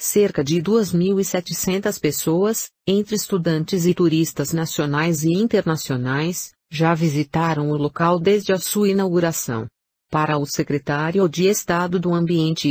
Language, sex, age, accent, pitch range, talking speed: Portuguese, female, 50-69, Brazilian, 150-185 Hz, 125 wpm